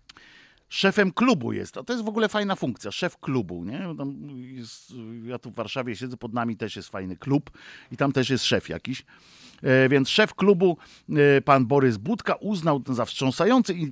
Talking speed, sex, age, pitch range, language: 170 wpm, male, 50-69, 120-155 Hz, Polish